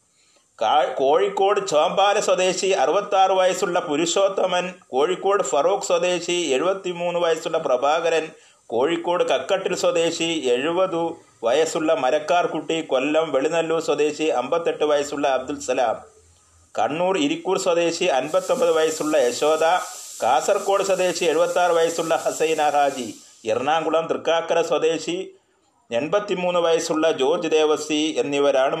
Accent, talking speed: native, 100 wpm